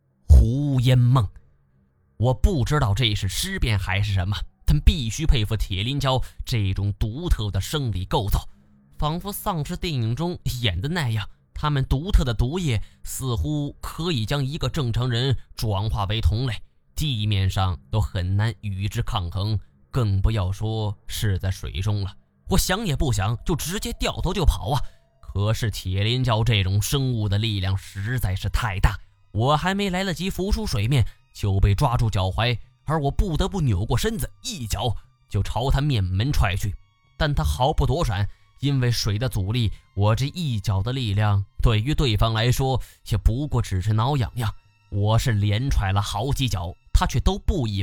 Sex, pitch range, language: male, 100-130 Hz, Chinese